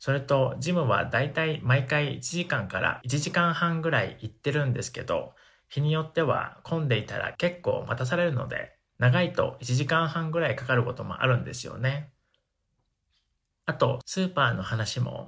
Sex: male